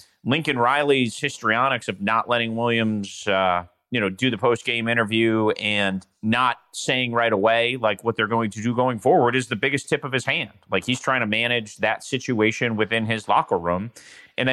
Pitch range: 110-140 Hz